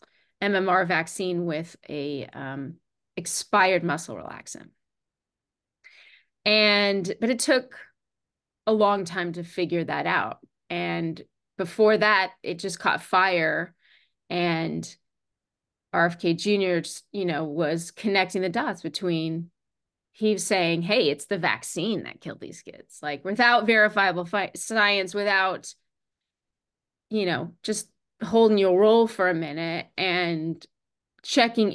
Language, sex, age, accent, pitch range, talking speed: English, female, 30-49, American, 170-205 Hz, 120 wpm